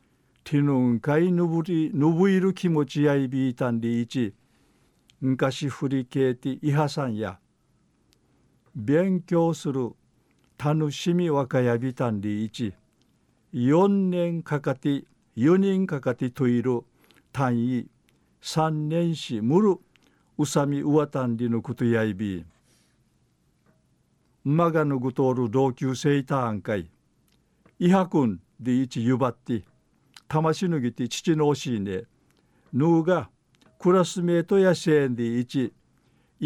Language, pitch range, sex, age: Japanese, 125-160 Hz, male, 50-69